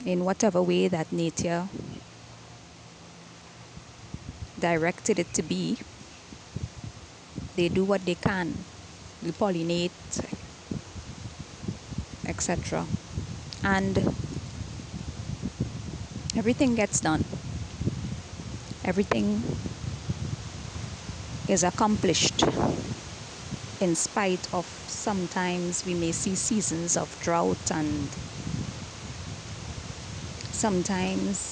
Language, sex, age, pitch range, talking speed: English, female, 20-39, 150-200 Hz, 70 wpm